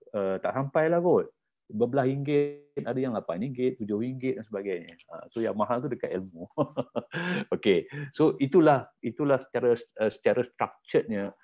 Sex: male